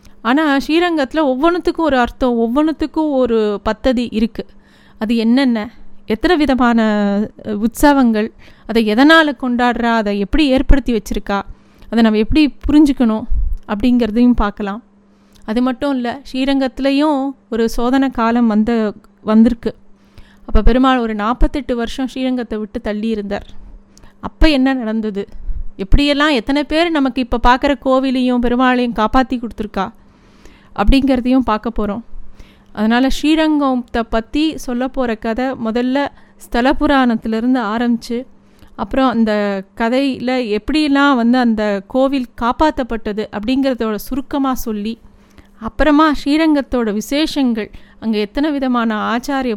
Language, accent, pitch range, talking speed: Tamil, native, 220-270 Hz, 105 wpm